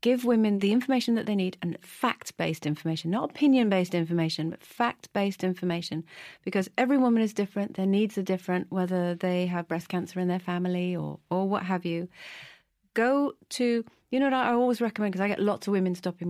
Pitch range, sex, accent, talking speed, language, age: 170-205 Hz, female, British, 195 wpm, English, 40-59